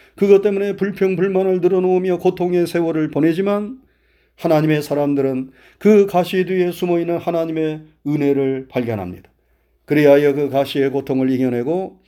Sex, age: male, 40-59